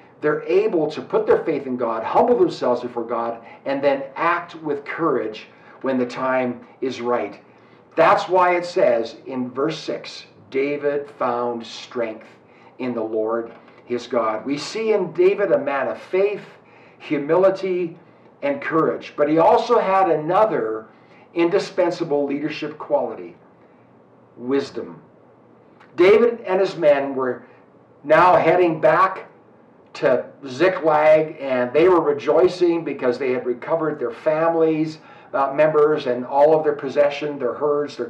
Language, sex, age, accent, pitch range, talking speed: English, male, 50-69, American, 125-175 Hz, 135 wpm